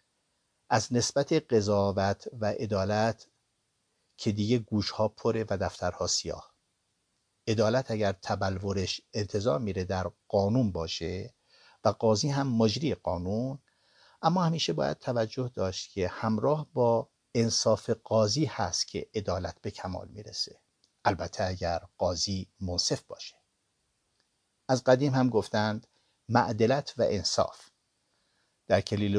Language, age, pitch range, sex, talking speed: Persian, 60-79, 95-115 Hz, male, 115 wpm